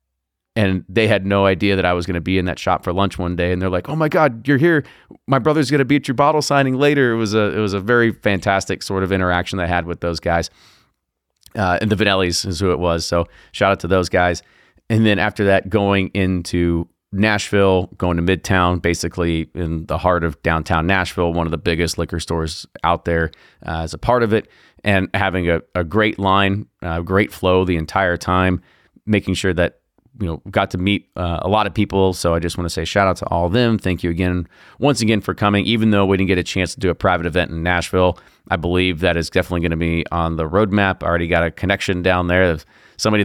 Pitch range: 85-105 Hz